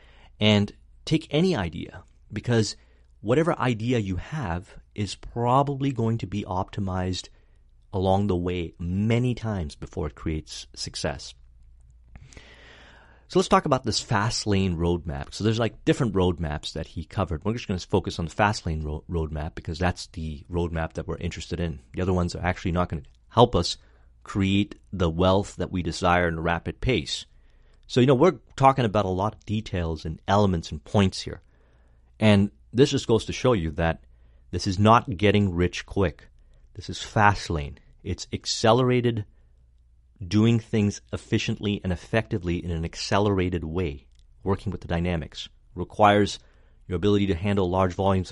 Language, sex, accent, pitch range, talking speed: Hindi, male, American, 80-105 Hz, 170 wpm